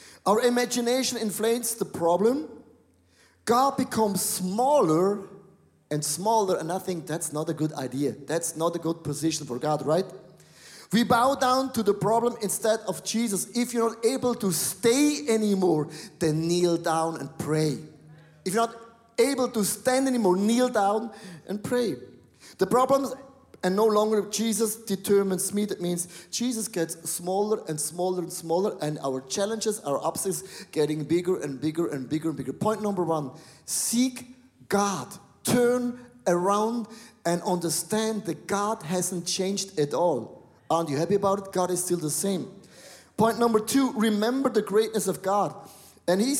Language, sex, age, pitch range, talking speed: English, male, 30-49, 165-225 Hz, 160 wpm